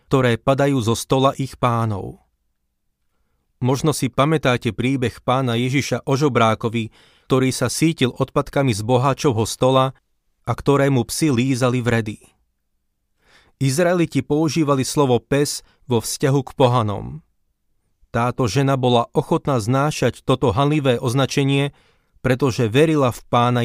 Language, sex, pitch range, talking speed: Slovak, male, 115-140 Hz, 115 wpm